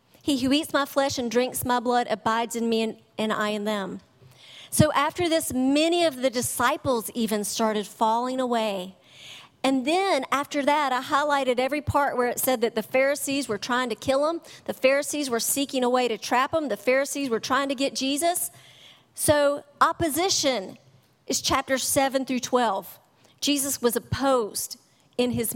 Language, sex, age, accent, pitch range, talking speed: English, female, 40-59, American, 210-280 Hz, 175 wpm